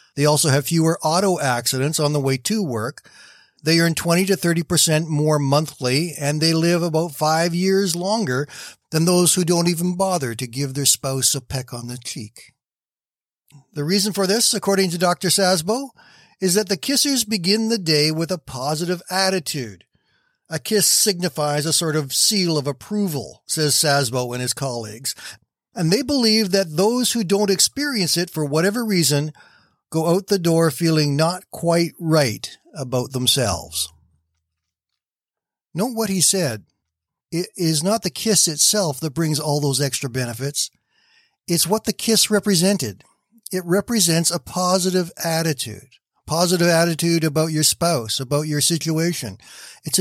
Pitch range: 140-185 Hz